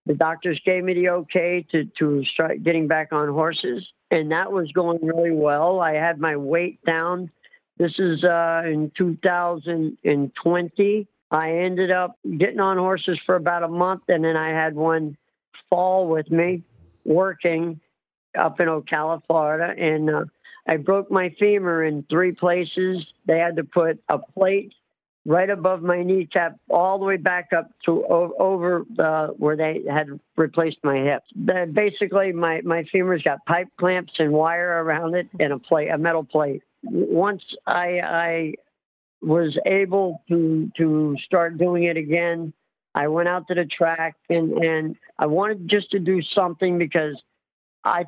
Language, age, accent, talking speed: English, 50-69, American, 160 wpm